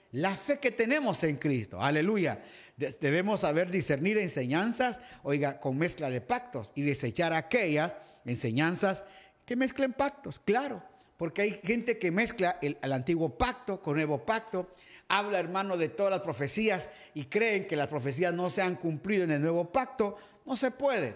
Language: Spanish